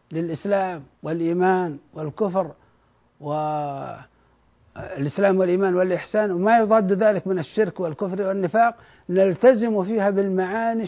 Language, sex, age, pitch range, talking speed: Arabic, male, 60-79, 160-215 Hz, 90 wpm